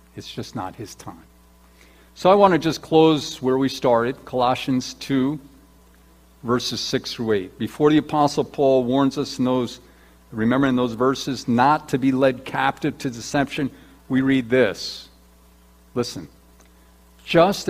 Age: 50-69